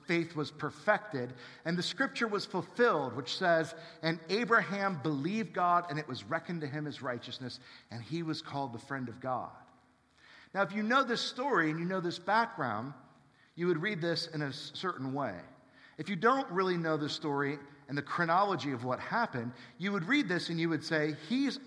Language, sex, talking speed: English, male, 195 wpm